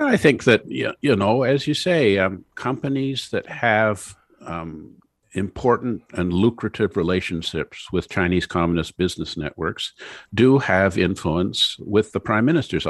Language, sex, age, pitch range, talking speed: English, male, 50-69, 85-105 Hz, 135 wpm